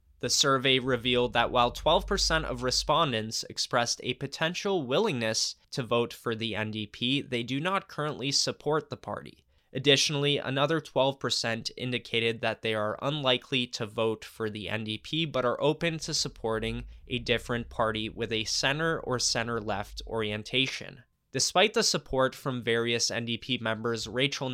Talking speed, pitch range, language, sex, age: 145 wpm, 110-140 Hz, English, male, 20-39